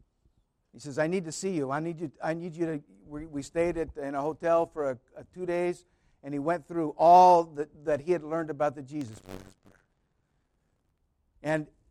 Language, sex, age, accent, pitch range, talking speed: English, male, 60-79, American, 135-185 Hz, 200 wpm